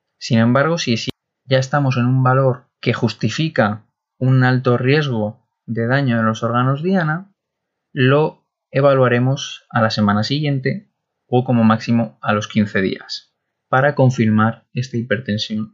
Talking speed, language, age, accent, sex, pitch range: 135 wpm, Spanish, 20-39, Spanish, male, 115-140 Hz